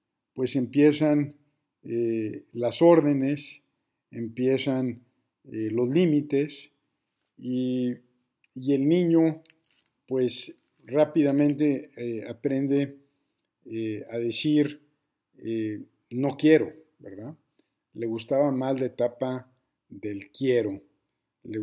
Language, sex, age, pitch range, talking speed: Spanish, male, 50-69, 115-145 Hz, 90 wpm